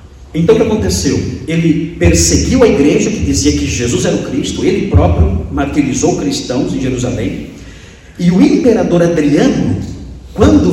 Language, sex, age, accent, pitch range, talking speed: Portuguese, male, 50-69, Brazilian, 125-205 Hz, 145 wpm